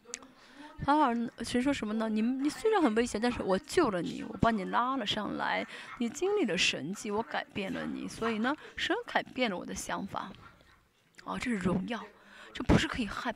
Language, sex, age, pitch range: Chinese, female, 20-39, 200-260 Hz